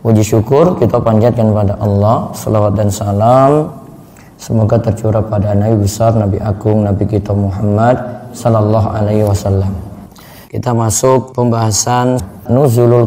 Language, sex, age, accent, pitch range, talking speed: Indonesian, male, 20-39, native, 110-125 Hz, 120 wpm